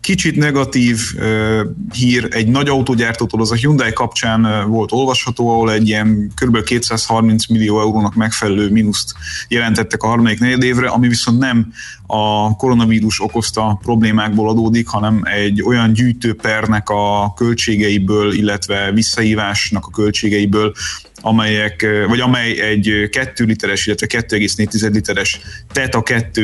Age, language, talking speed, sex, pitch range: 30-49, Hungarian, 130 wpm, male, 100-115 Hz